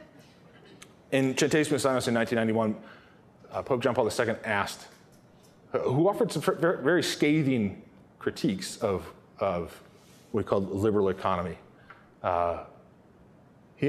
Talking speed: 110 wpm